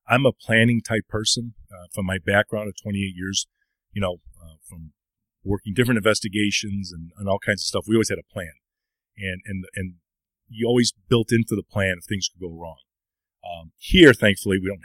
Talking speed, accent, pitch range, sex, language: 200 wpm, American, 90-110 Hz, male, English